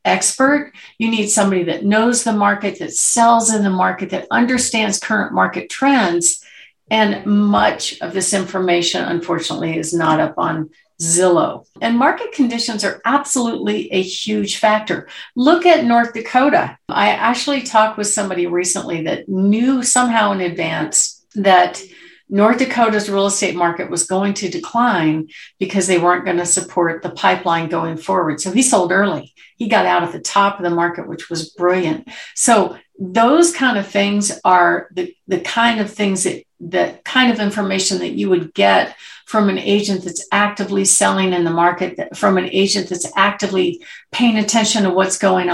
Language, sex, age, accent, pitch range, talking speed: English, female, 50-69, American, 180-235 Hz, 165 wpm